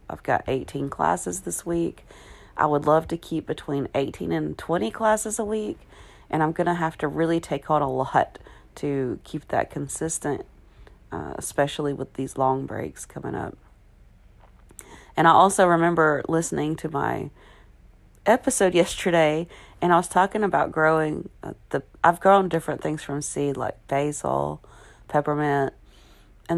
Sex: female